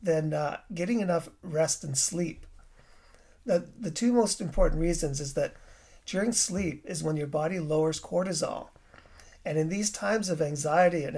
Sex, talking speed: male, 160 wpm